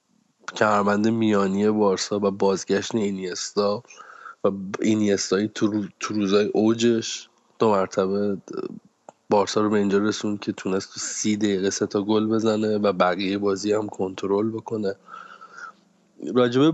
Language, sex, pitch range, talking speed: Persian, male, 100-115 Hz, 120 wpm